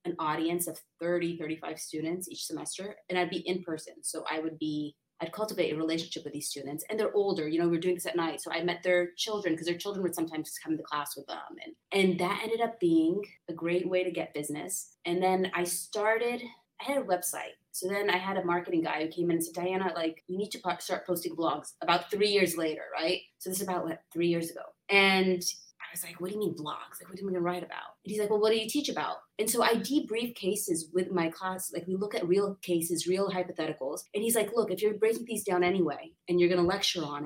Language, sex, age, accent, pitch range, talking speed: English, female, 30-49, American, 165-200 Hz, 265 wpm